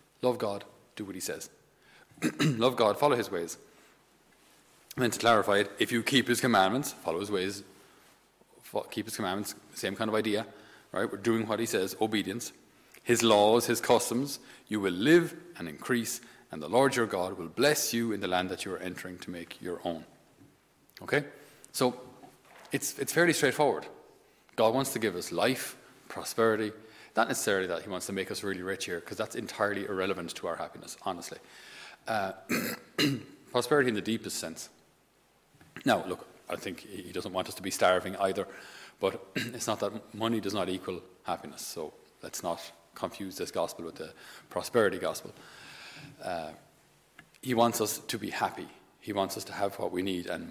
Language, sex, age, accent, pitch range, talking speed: English, male, 30-49, Irish, 95-120 Hz, 180 wpm